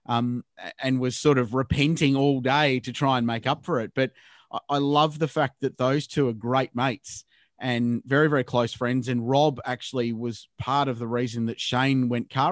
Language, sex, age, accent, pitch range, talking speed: English, male, 30-49, Australian, 115-135 Hz, 205 wpm